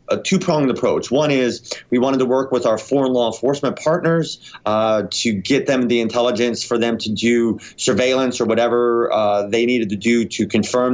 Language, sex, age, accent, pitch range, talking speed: English, male, 30-49, American, 110-135 Hz, 190 wpm